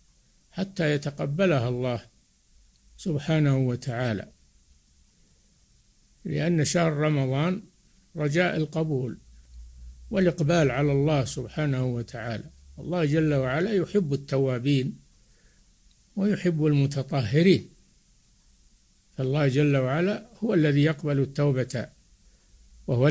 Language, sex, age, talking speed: Arabic, male, 60-79, 80 wpm